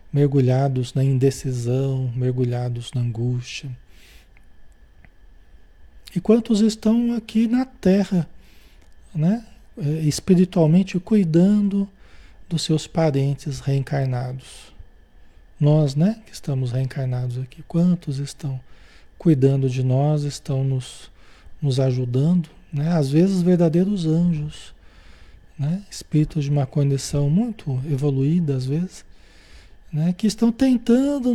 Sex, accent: male, Brazilian